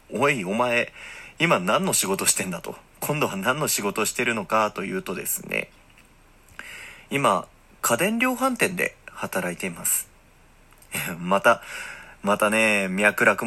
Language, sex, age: Japanese, male, 40-59